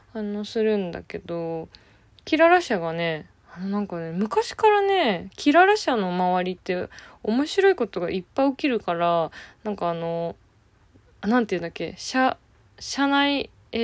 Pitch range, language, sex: 180-260 Hz, Japanese, female